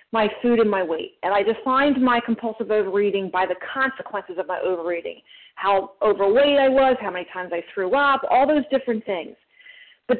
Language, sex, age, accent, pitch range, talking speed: English, female, 40-59, American, 205-285 Hz, 190 wpm